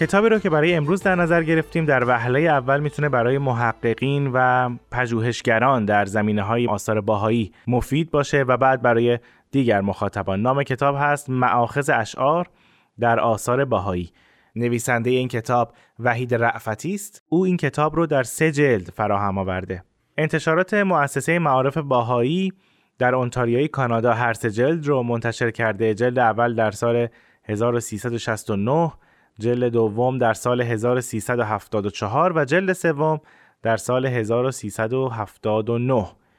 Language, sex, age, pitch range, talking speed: Persian, male, 20-39, 115-145 Hz, 130 wpm